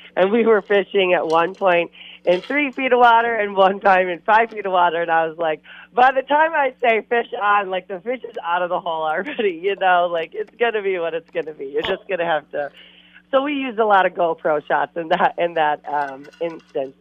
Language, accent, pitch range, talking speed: English, American, 145-200 Hz, 255 wpm